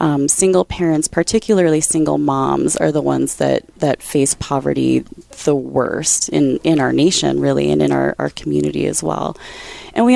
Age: 20-39